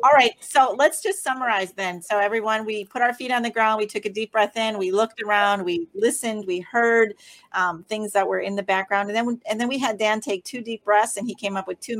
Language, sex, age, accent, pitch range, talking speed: English, female, 40-59, American, 175-215 Hz, 260 wpm